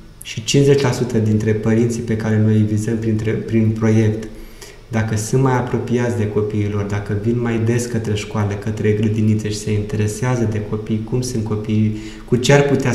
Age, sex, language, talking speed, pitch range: 20-39, male, Romanian, 170 wpm, 110-130 Hz